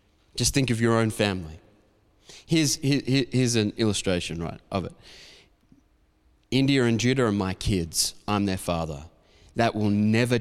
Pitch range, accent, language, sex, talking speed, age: 105-130 Hz, Australian, English, male, 145 wpm, 20-39